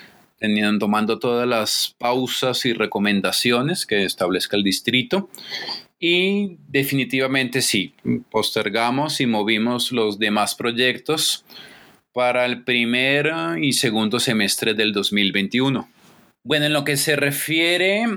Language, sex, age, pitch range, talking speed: Spanish, male, 30-49, 115-150 Hz, 110 wpm